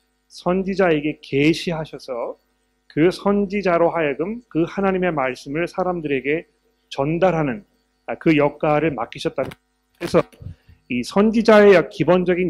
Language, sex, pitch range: Korean, male, 145-185 Hz